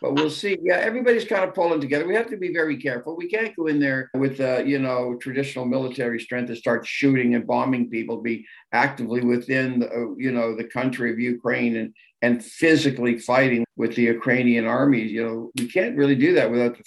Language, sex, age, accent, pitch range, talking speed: English, male, 50-69, American, 120-145 Hz, 215 wpm